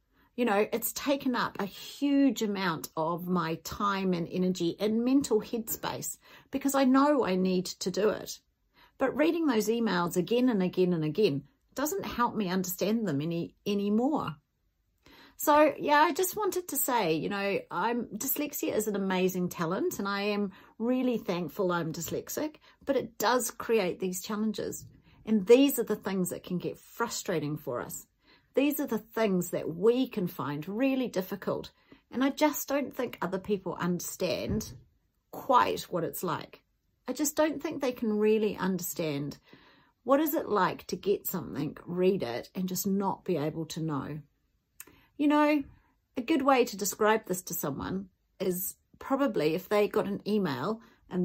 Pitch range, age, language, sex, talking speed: 180-250 Hz, 40-59, English, female, 165 wpm